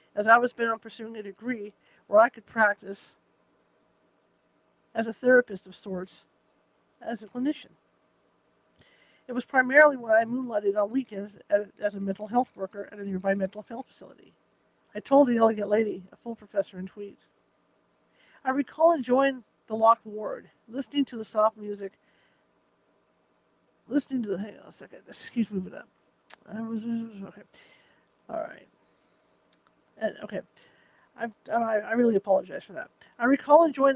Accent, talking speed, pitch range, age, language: American, 150 wpm, 205-250 Hz, 50-69, English